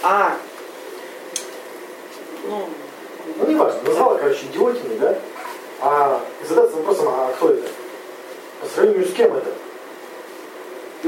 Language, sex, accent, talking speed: Russian, male, native, 120 wpm